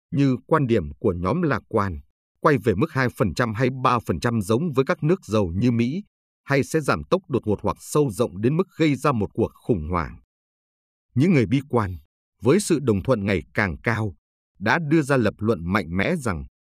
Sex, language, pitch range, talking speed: male, Vietnamese, 95-140 Hz, 210 wpm